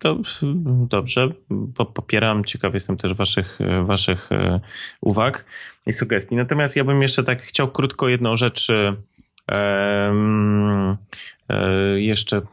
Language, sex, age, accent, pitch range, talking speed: Polish, male, 20-39, native, 100-120 Hz, 105 wpm